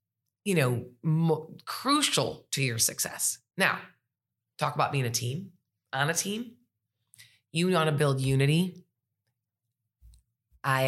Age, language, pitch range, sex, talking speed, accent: 30-49, English, 120-155 Hz, female, 115 wpm, American